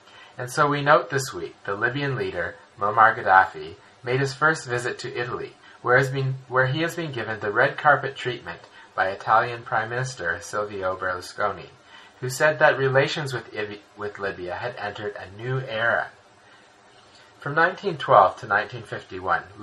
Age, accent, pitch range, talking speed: 30-49, American, 100-140 Hz, 145 wpm